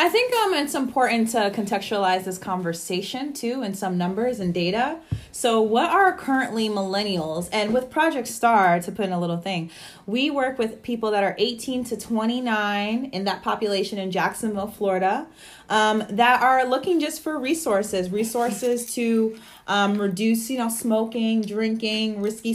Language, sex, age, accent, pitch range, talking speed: English, female, 30-49, American, 185-240 Hz, 160 wpm